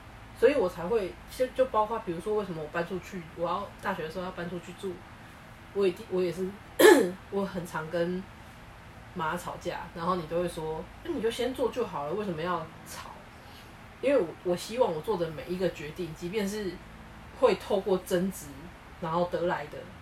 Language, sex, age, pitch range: Chinese, female, 20-39, 155-185 Hz